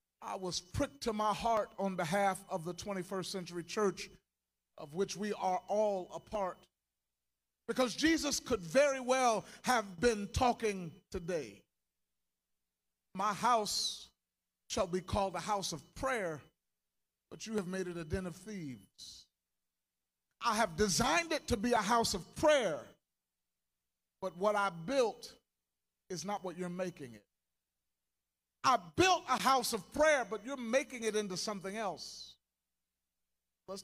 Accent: American